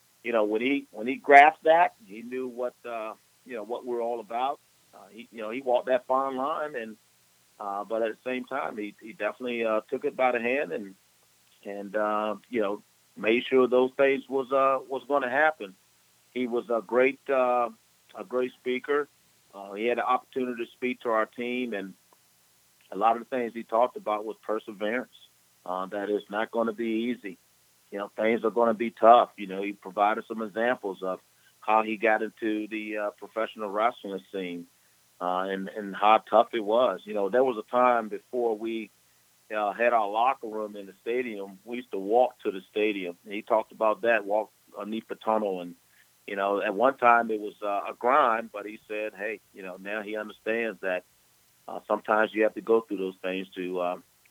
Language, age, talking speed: English, 40-59, 210 wpm